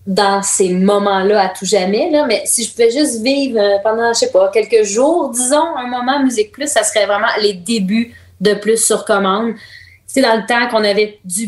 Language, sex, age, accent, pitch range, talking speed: French, female, 30-49, Canadian, 185-225 Hz, 215 wpm